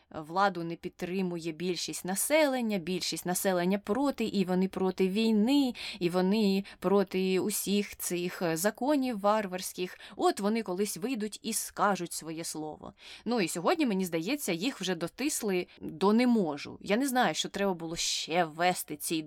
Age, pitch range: 20-39, 165-210 Hz